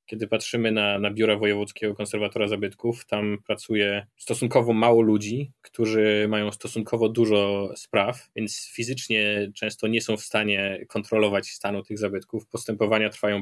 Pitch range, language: 100-110 Hz, Polish